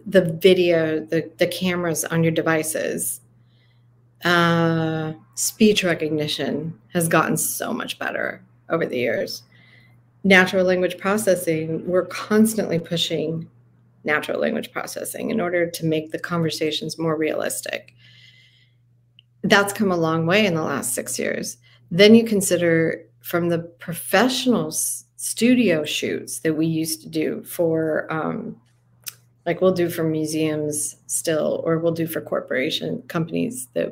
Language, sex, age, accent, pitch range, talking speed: English, female, 40-59, American, 120-175 Hz, 130 wpm